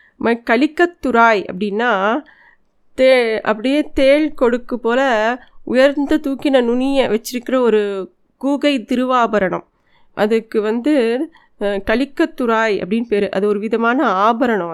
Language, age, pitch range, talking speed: Tamil, 20-39, 205-255 Hz, 100 wpm